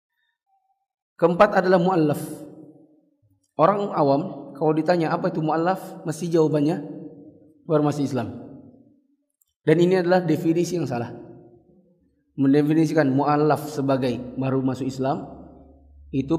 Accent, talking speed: native, 105 wpm